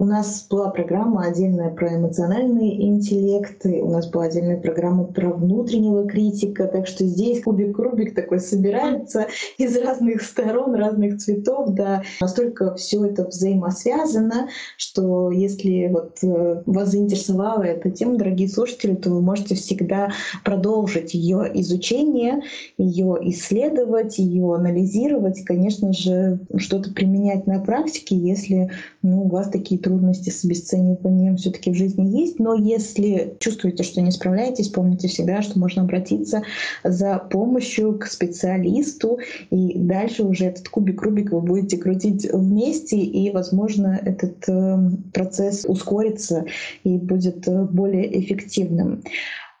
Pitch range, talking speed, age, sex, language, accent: 185-215 Hz, 125 wpm, 20-39, female, Russian, native